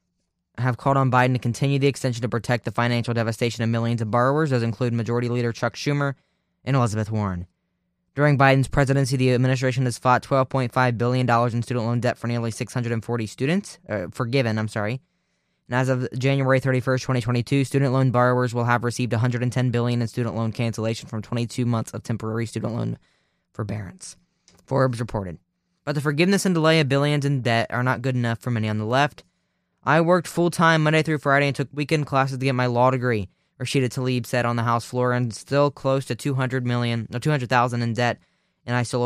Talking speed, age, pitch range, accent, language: 200 wpm, 10-29, 115-140 Hz, American, English